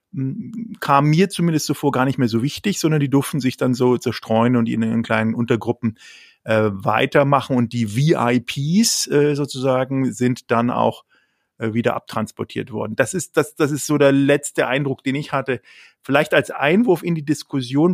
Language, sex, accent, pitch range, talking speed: German, male, German, 115-140 Hz, 175 wpm